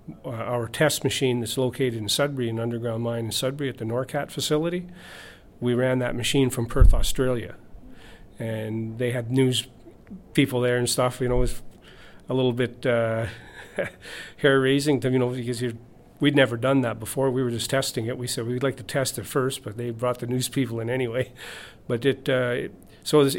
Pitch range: 115-135 Hz